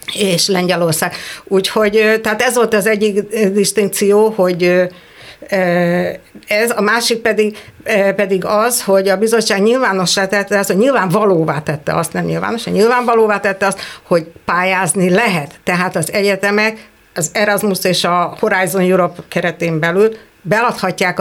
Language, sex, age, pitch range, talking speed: Hungarian, female, 60-79, 180-220 Hz, 130 wpm